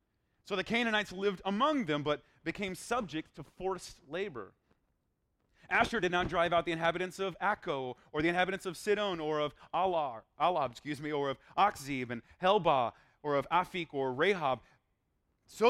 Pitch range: 140-195 Hz